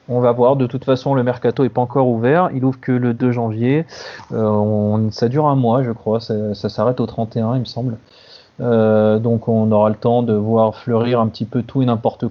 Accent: French